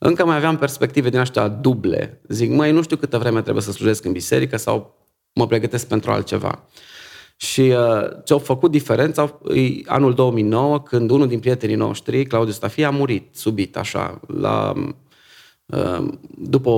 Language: Romanian